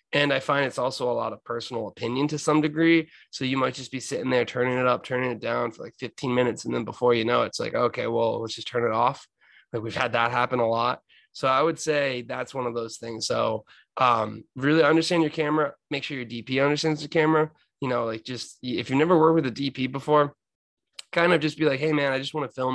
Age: 20-39